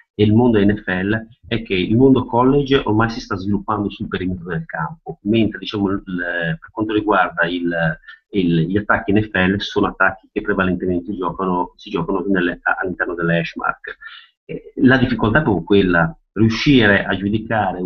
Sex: male